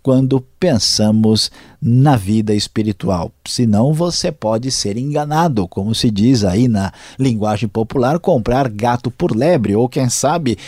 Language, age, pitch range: Portuguese, 50-69, 110-160 Hz